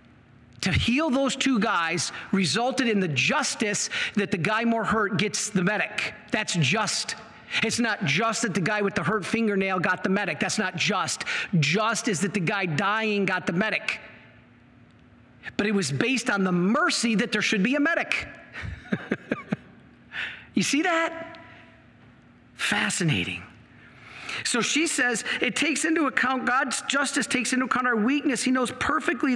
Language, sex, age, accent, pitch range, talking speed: English, male, 40-59, American, 180-255 Hz, 160 wpm